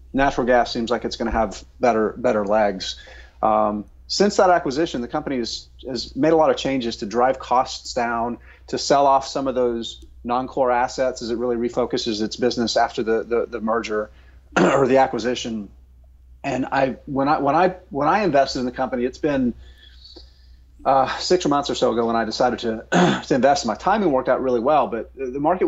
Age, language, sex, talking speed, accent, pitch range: 30-49, English, male, 200 wpm, American, 110-135 Hz